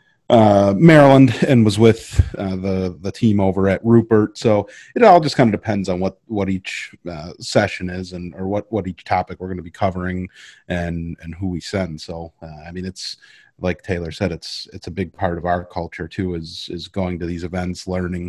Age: 30-49